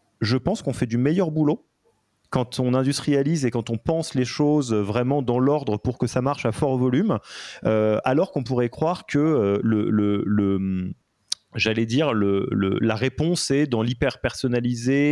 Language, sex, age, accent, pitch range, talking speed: French, male, 30-49, French, 115-150 Hz, 185 wpm